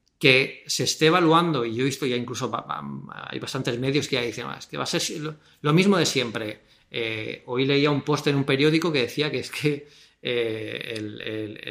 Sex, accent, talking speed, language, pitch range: male, Spanish, 195 wpm, English, 115-140 Hz